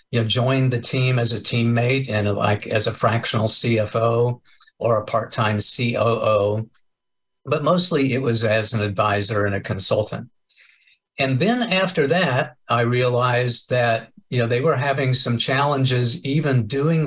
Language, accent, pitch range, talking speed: English, American, 110-125 Hz, 155 wpm